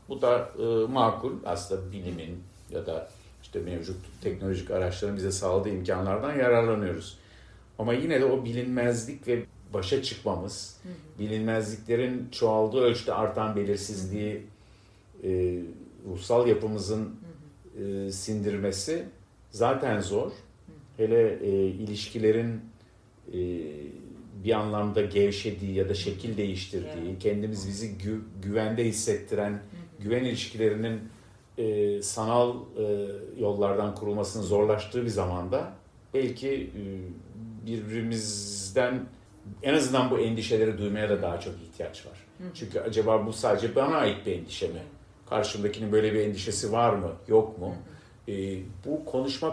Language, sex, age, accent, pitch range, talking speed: Turkish, male, 50-69, native, 95-115 Hz, 110 wpm